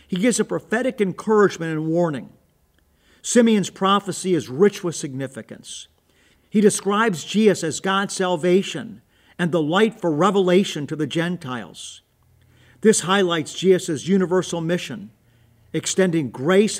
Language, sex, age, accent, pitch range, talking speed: English, male, 50-69, American, 150-195 Hz, 120 wpm